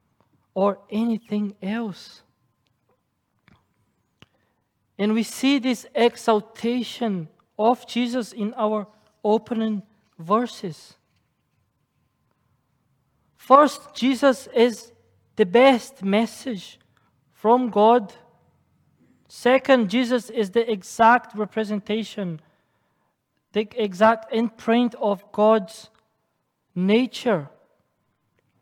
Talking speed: 70 wpm